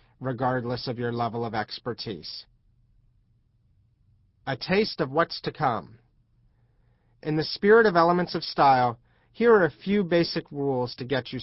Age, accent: 40-59, American